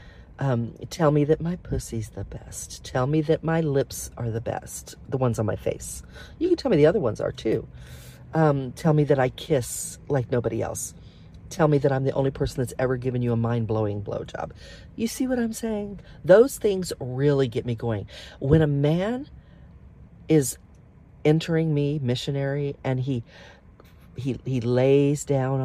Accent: American